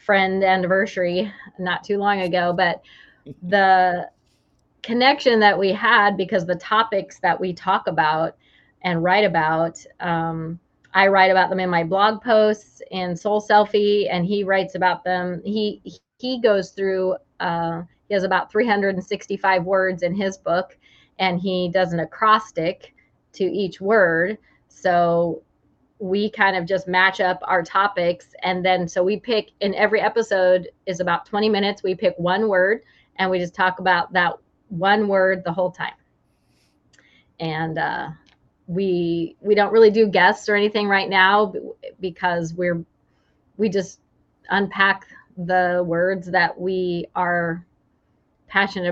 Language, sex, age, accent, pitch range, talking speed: English, female, 30-49, American, 175-200 Hz, 145 wpm